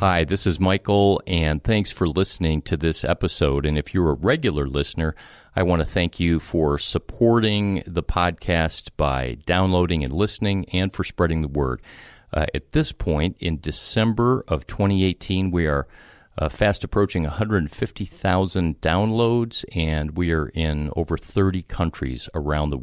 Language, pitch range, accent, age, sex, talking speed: English, 75-95 Hz, American, 50-69, male, 155 wpm